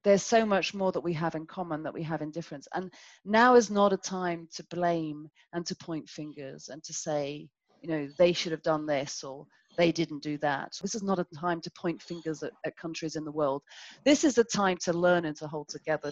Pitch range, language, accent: 160-200 Hz, English, British